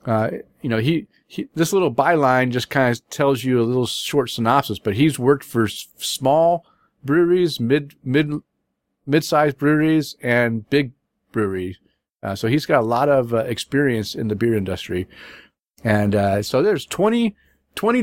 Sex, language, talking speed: male, English, 165 wpm